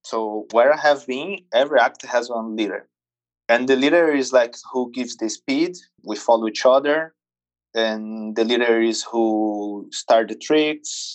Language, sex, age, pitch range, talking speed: English, male, 20-39, 100-135 Hz, 165 wpm